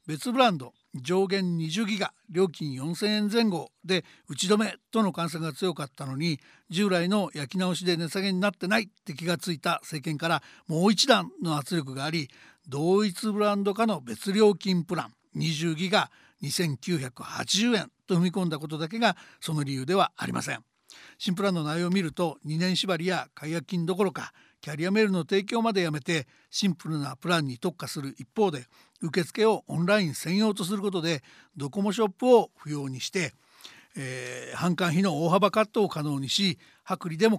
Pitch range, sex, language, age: 160-205 Hz, male, Japanese, 60-79